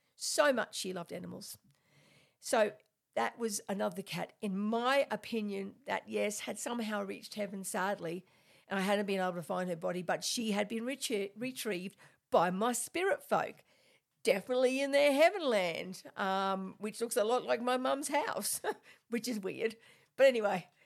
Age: 50-69